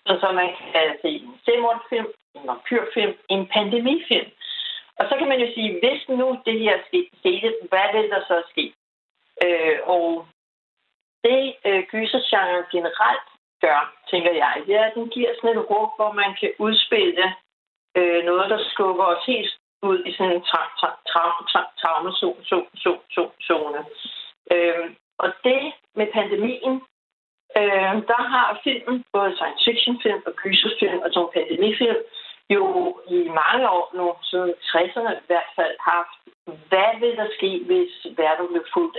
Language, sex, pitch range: Danish, female, 180-265 Hz